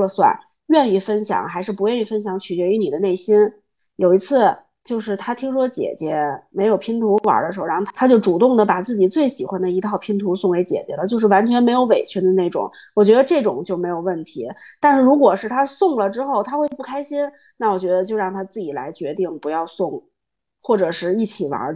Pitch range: 185-255 Hz